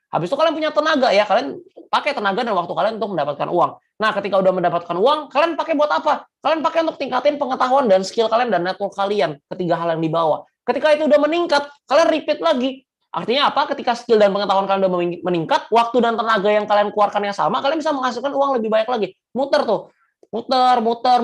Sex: male